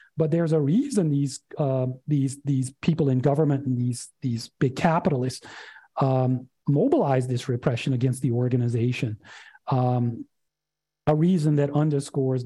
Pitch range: 130-175 Hz